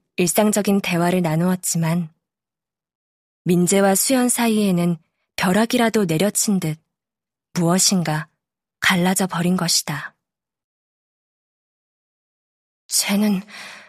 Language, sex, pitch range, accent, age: Korean, female, 180-235 Hz, native, 20-39